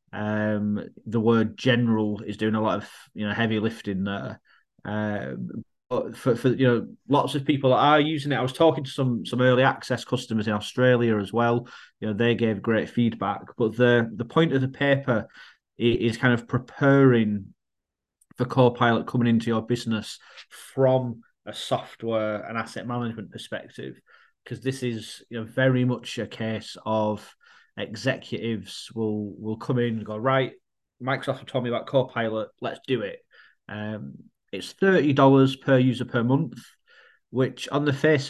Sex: male